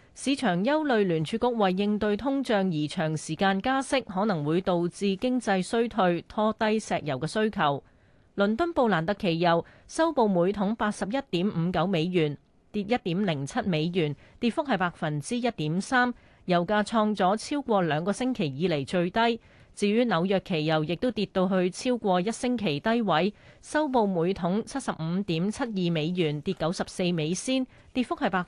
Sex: female